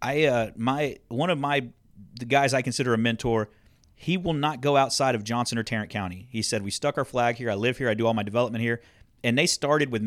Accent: American